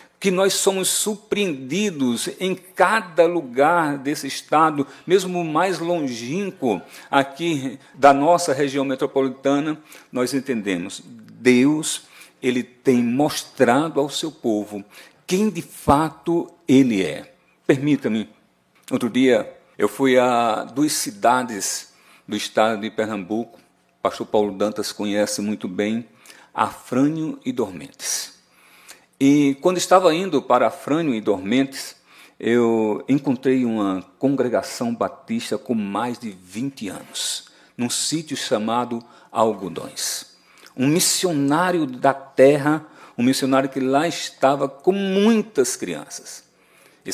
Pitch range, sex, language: 115-165 Hz, male, Portuguese